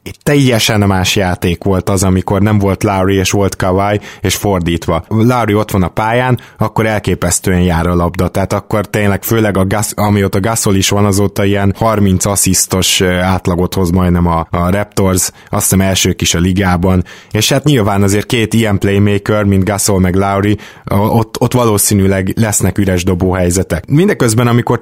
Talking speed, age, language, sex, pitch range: 175 wpm, 20-39, Hungarian, male, 95-115 Hz